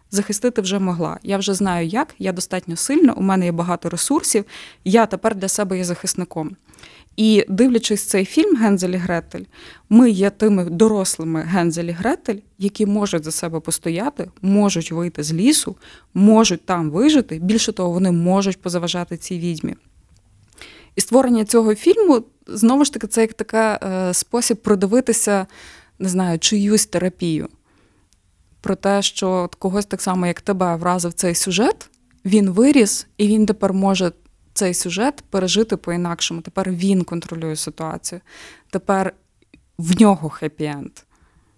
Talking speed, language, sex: 140 wpm, Ukrainian, female